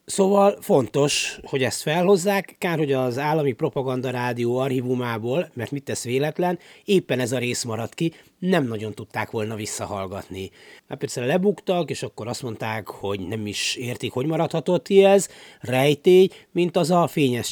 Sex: male